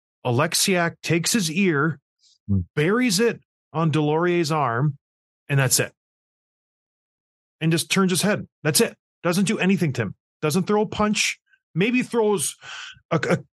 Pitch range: 135-195 Hz